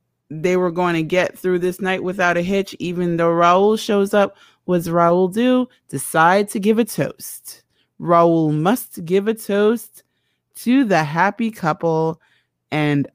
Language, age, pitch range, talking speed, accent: English, 30-49, 160-195 Hz, 155 wpm, American